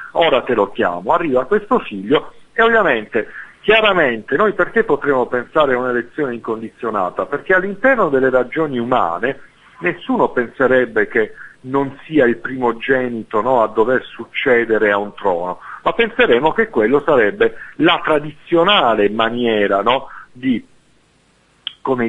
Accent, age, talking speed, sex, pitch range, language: native, 50-69, 130 wpm, male, 105-165 Hz, Italian